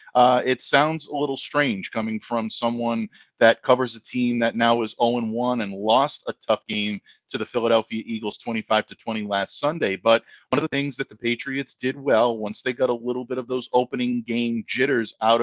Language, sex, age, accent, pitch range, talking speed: English, male, 50-69, American, 110-125 Hz, 200 wpm